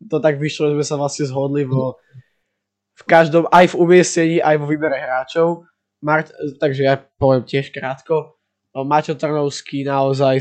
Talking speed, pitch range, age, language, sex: 155 wpm, 135-155 Hz, 20-39, Slovak, male